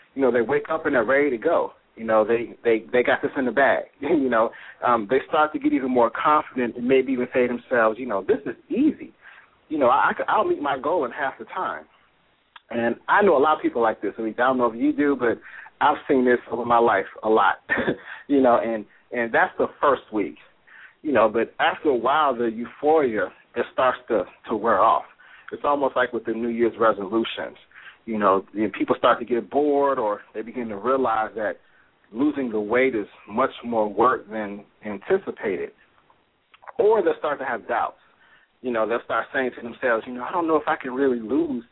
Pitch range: 115-155 Hz